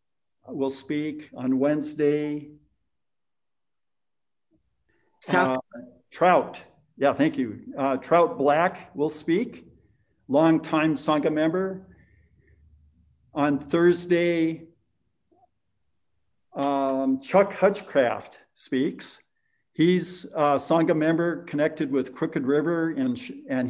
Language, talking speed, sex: English, 85 wpm, male